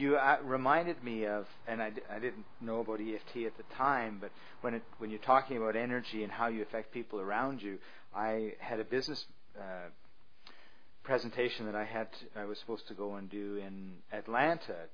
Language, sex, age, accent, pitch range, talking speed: English, male, 50-69, American, 105-125 Hz, 195 wpm